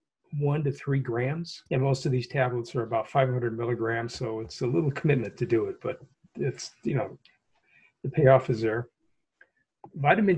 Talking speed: 175 wpm